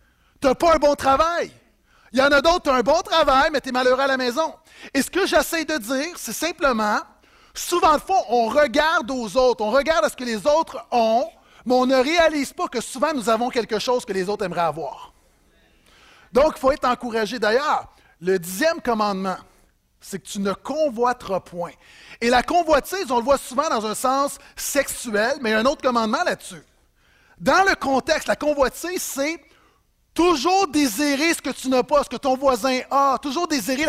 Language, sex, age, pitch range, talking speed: French, male, 30-49, 225-290 Hz, 205 wpm